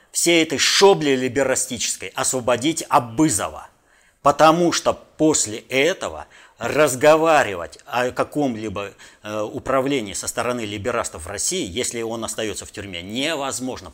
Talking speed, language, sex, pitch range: 110 wpm, Russian, male, 135-205 Hz